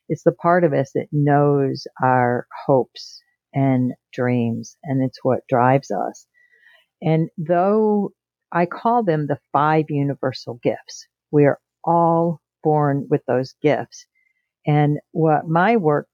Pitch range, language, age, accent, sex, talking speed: 145-180 Hz, English, 50-69, American, female, 135 wpm